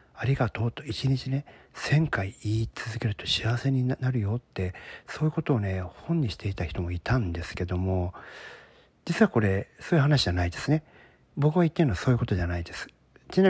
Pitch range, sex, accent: 100-165 Hz, male, native